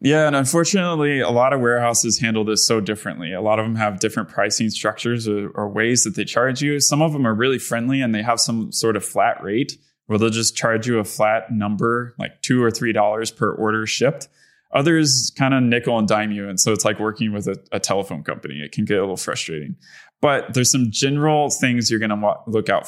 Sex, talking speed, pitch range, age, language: male, 230 wpm, 105-130 Hz, 20-39, English